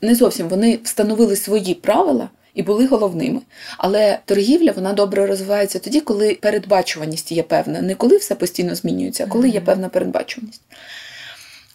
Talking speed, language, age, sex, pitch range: 150 wpm, Ukrainian, 20-39, female, 180-230 Hz